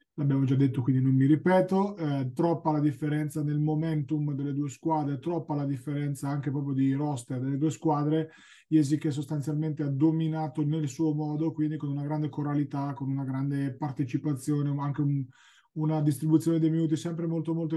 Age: 20-39